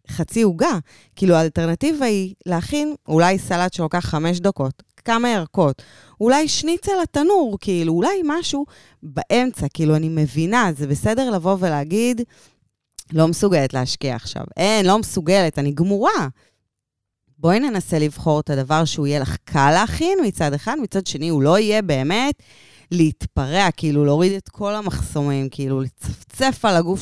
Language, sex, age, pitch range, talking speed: Hebrew, female, 20-39, 150-215 Hz, 140 wpm